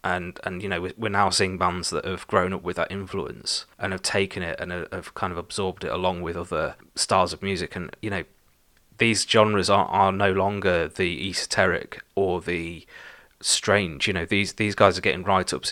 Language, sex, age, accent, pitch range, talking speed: English, male, 20-39, British, 90-100 Hz, 200 wpm